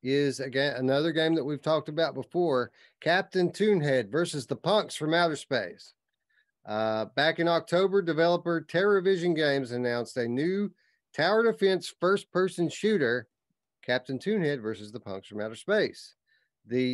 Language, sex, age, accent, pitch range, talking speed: English, male, 40-59, American, 120-175 Hz, 145 wpm